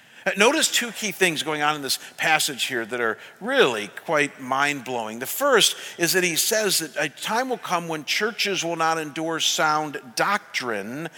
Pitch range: 165-205 Hz